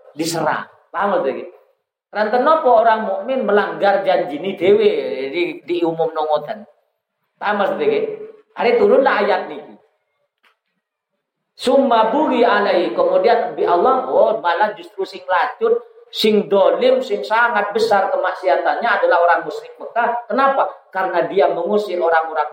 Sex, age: male, 40-59